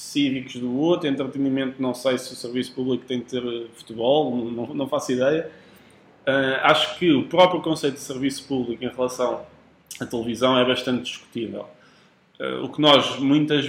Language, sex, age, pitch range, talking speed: Portuguese, male, 20-39, 115-135 Hz, 170 wpm